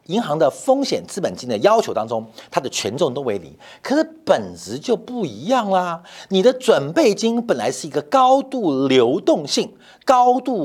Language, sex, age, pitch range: Chinese, male, 50-69, 180-275 Hz